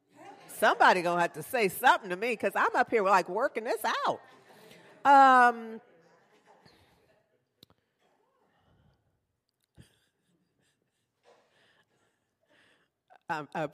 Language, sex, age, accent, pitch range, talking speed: English, female, 50-69, American, 145-225 Hz, 75 wpm